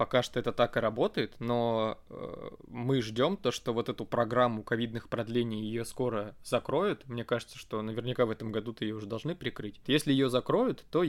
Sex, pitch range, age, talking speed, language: male, 110-125 Hz, 20-39, 195 wpm, Russian